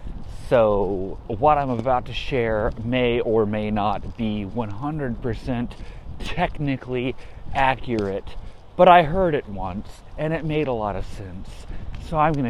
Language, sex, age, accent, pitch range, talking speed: English, male, 30-49, American, 95-125 Hz, 140 wpm